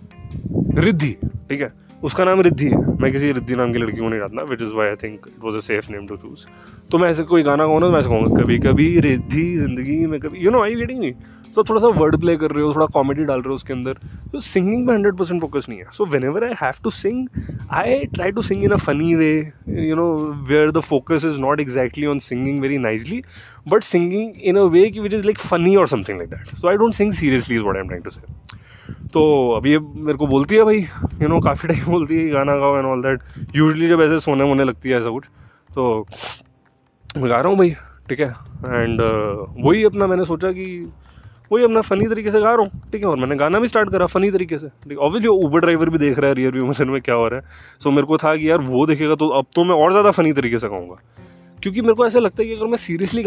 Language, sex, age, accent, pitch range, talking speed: Hindi, male, 20-39, native, 130-185 Hz, 255 wpm